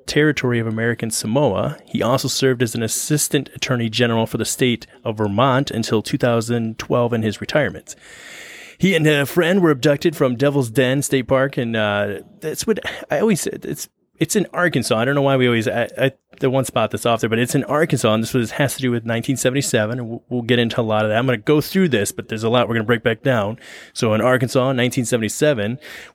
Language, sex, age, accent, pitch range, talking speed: English, male, 20-39, American, 115-140 Hz, 225 wpm